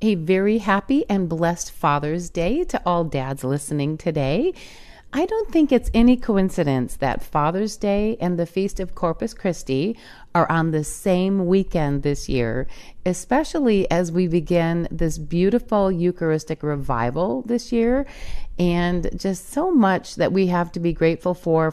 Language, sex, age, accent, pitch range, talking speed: English, female, 40-59, American, 160-200 Hz, 150 wpm